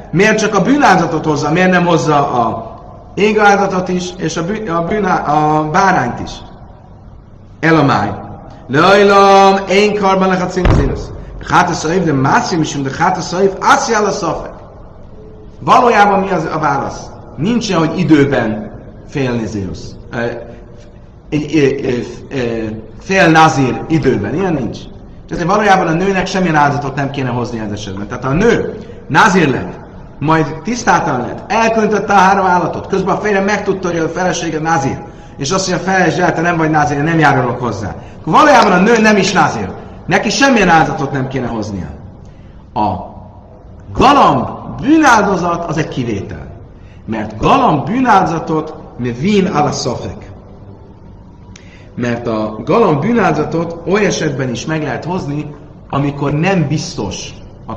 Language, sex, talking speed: Hungarian, male, 140 wpm